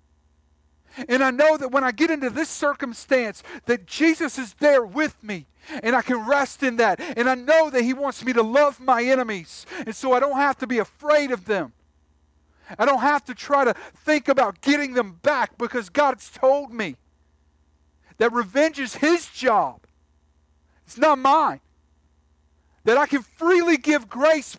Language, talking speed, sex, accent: English, 175 wpm, male, American